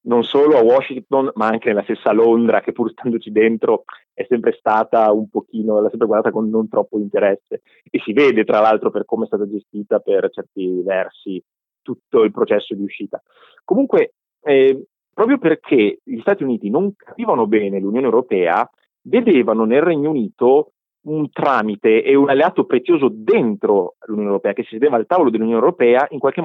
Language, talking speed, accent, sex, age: Italian, 175 wpm, native, male, 30-49